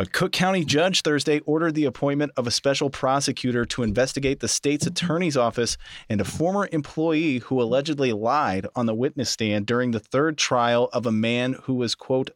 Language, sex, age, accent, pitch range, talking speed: English, male, 30-49, American, 105-130 Hz, 190 wpm